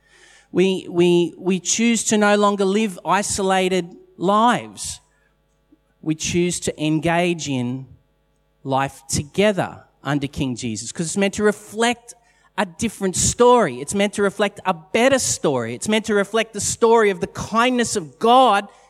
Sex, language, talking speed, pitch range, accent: male, English, 145 wpm, 155-205 Hz, Australian